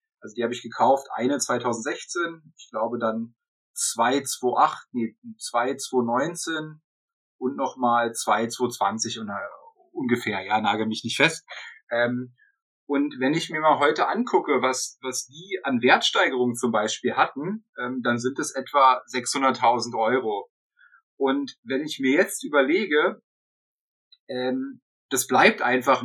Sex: male